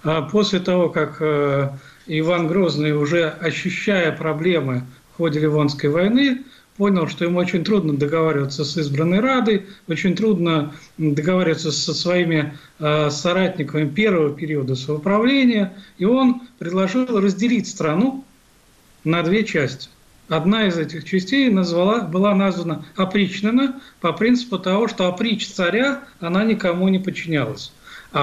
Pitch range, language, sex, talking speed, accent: 160-210 Hz, Russian, male, 125 wpm, native